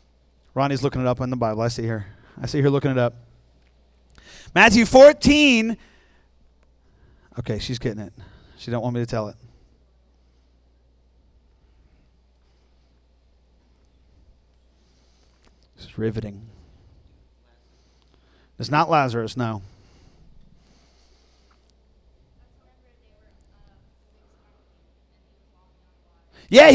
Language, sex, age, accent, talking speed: English, male, 40-59, American, 85 wpm